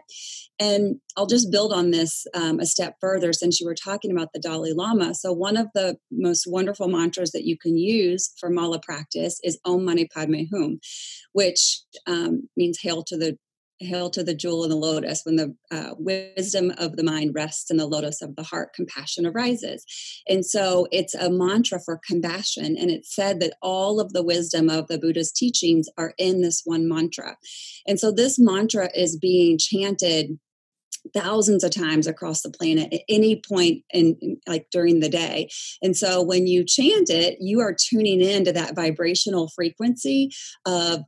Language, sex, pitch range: English, female, 165-200 Hz